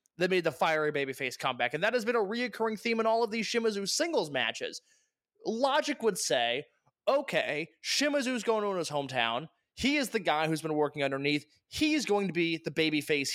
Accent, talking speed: American, 200 wpm